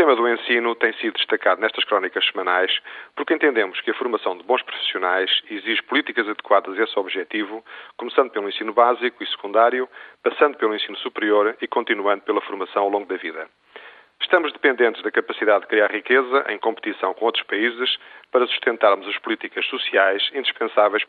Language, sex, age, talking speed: Portuguese, male, 40-59, 170 wpm